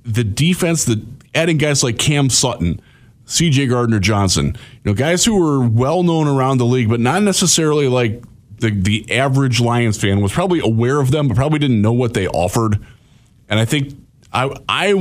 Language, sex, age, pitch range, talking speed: English, male, 30-49, 110-140 Hz, 190 wpm